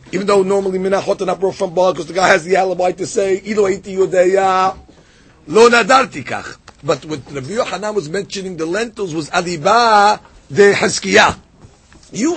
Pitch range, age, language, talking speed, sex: 190-240 Hz, 50-69, English, 155 wpm, male